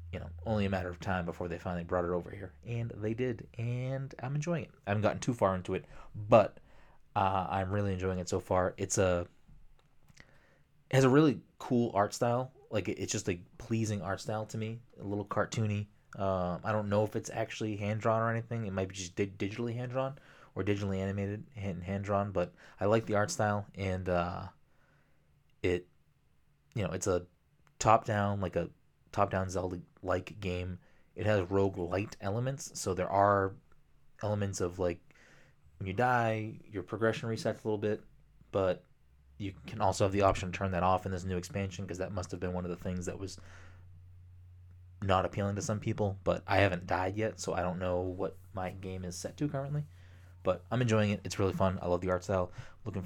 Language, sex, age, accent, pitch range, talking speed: English, male, 20-39, American, 90-110 Hz, 210 wpm